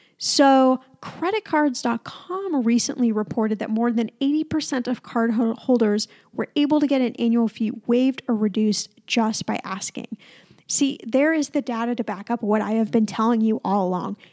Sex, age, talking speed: female, 10-29, 170 wpm